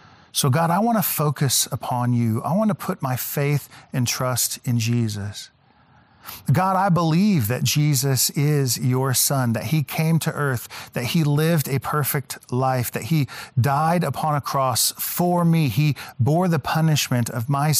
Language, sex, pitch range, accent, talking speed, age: English, male, 120-150 Hz, American, 170 wpm, 40-59